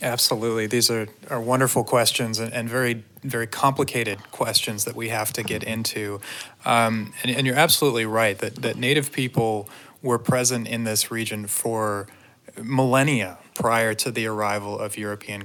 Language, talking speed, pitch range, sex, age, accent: English, 160 wpm, 105-120 Hz, male, 30-49, American